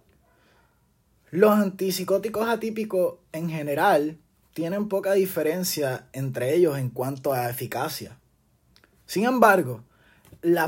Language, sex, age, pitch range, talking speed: Spanish, male, 20-39, 145-200 Hz, 95 wpm